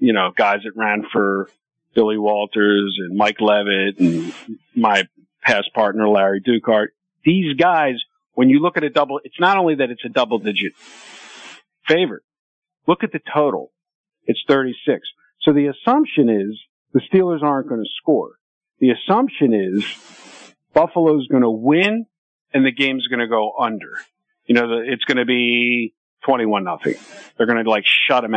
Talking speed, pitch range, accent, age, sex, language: 170 wpm, 110-155 Hz, American, 50-69, male, English